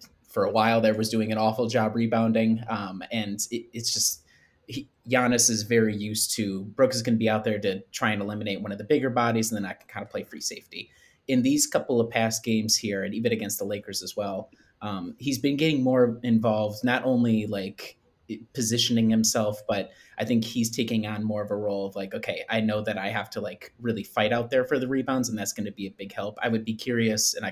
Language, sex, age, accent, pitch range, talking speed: English, male, 20-39, American, 105-120 Hz, 240 wpm